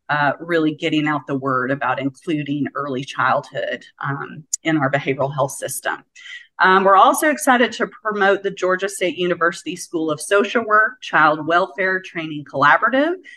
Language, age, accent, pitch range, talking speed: English, 40-59, American, 155-200 Hz, 155 wpm